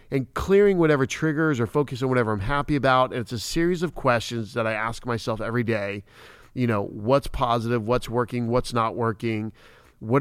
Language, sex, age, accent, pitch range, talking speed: English, male, 40-59, American, 115-135 Hz, 195 wpm